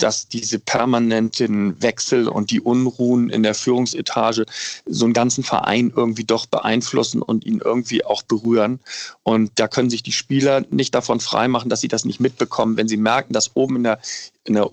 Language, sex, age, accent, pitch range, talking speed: German, male, 40-59, German, 110-130 Hz, 180 wpm